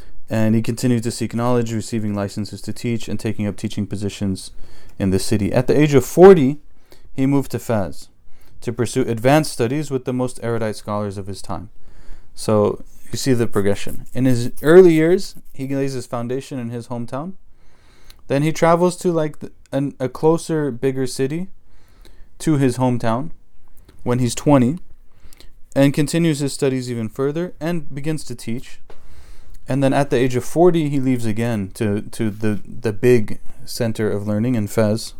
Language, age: English, 20-39